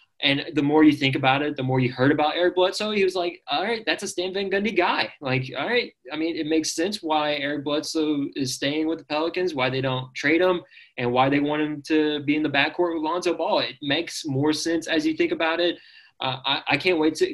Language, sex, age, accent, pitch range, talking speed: English, male, 20-39, American, 130-175 Hz, 255 wpm